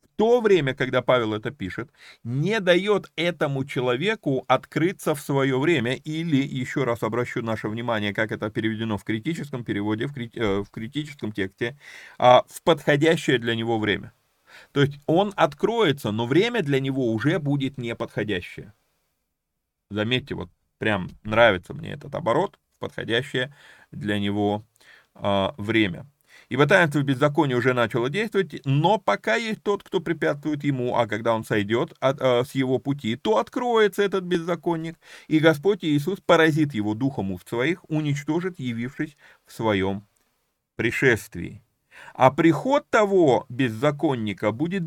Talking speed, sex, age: 135 wpm, male, 30-49